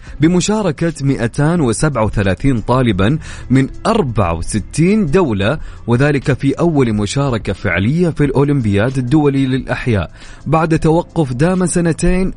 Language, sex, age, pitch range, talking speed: Arabic, male, 30-49, 105-145 Hz, 90 wpm